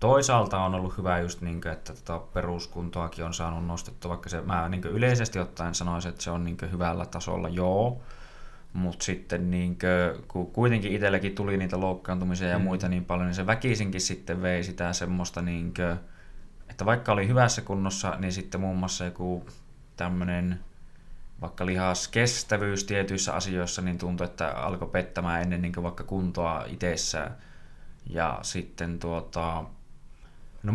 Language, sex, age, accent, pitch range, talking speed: Finnish, male, 20-39, native, 90-100 Hz, 135 wpm